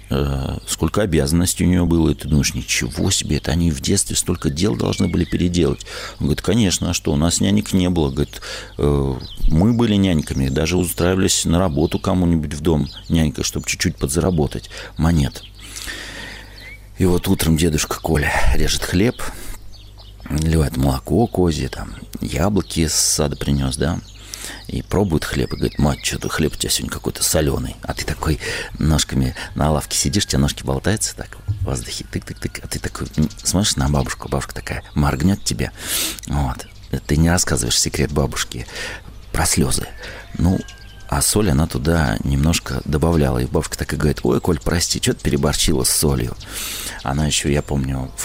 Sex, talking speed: male, 165 wpm